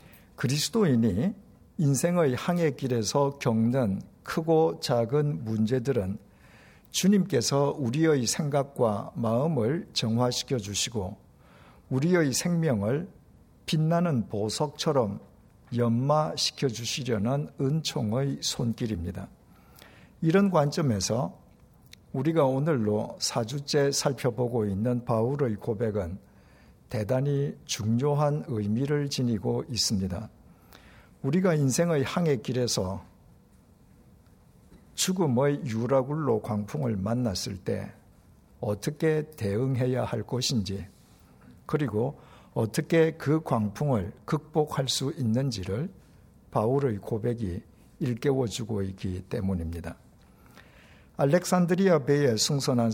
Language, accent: Korean, native